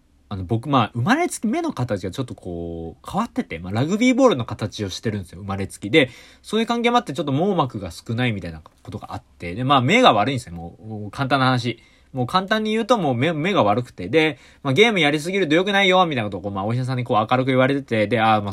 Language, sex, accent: Japanese, male, native